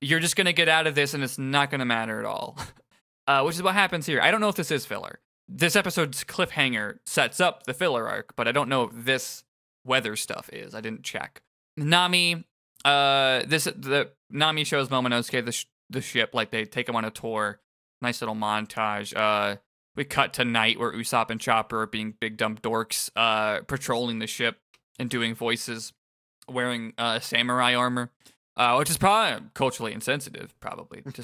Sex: male